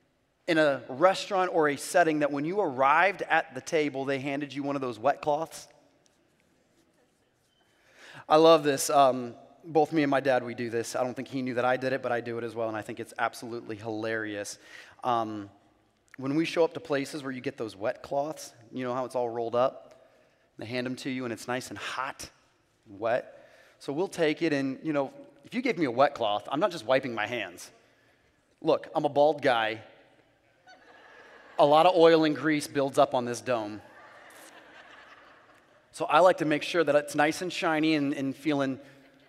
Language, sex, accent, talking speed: English, male, American, 210 wpm